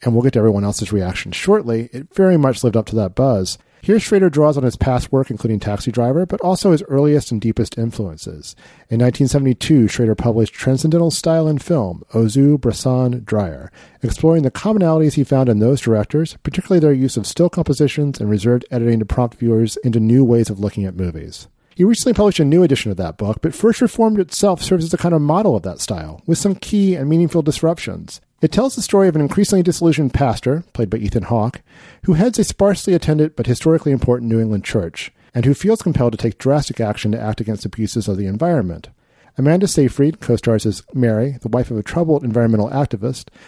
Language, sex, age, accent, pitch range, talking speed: English, male, 40-59, American, 115-165 Hz, 210 wpm